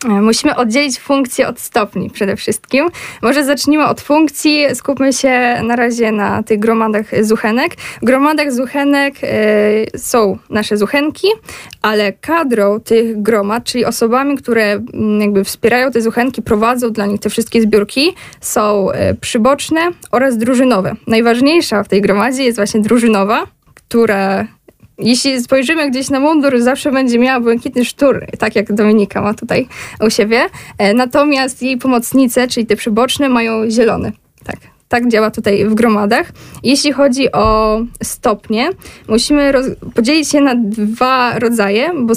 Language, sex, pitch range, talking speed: Polish, female, 220-265 Hz, 140 wpm